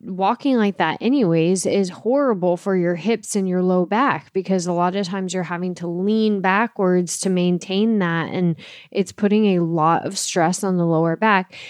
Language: English